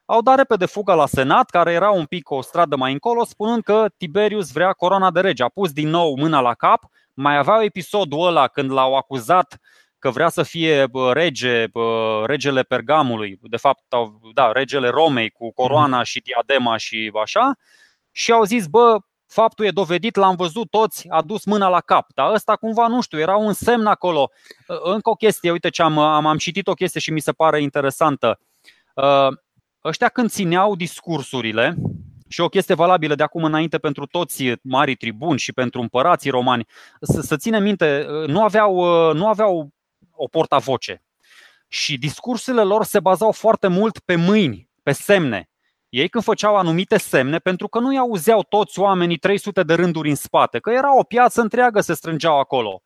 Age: 20-39